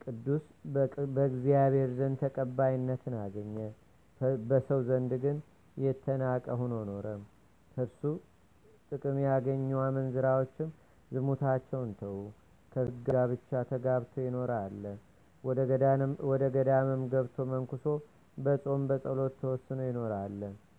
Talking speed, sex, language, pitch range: 95 wpm, male, Amharic, 125-135 Hz